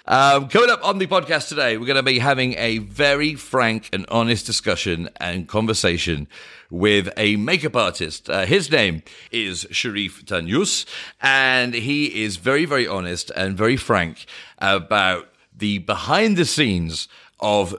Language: English